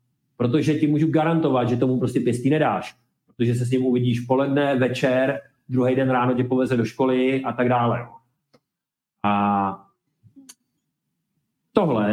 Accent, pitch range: native, 115-145 Hz